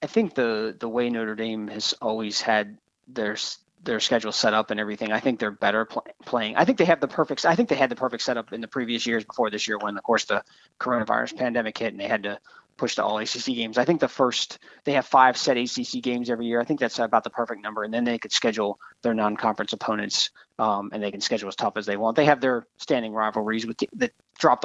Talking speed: 255 wpm